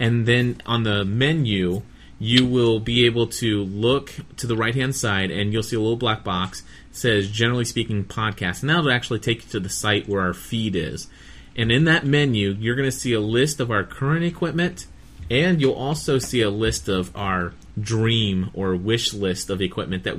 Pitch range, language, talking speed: 100-130 Hz, English, 210 wpm